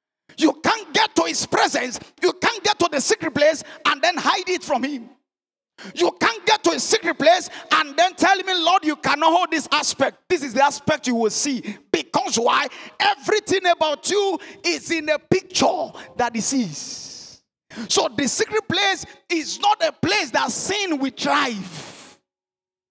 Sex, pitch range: male, 285-370 Hz